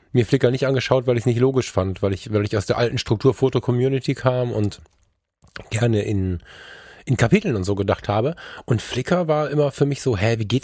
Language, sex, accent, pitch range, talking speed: German, male, German, 110-135 Hz, 225 wpm